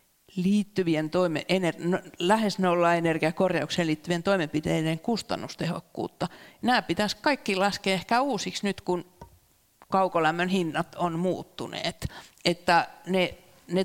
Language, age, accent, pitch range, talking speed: Finnish, 50-69, native, 160-195 Hz, 100 wpm